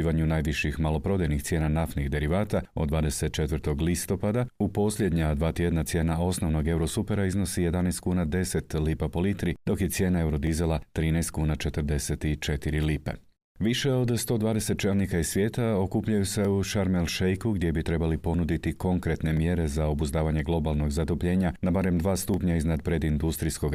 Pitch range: 80-95 Hz